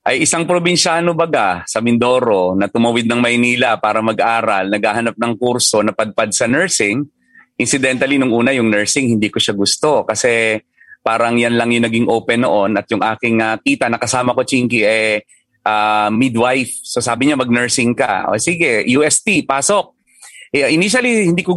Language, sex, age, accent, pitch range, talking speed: English, male, 30-49, Filipino, 115-140 Hz, 170 wpm